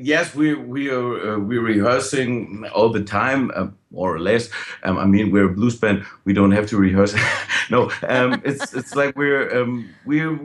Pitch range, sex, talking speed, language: 115-150 Hz, male, 195 wpm, English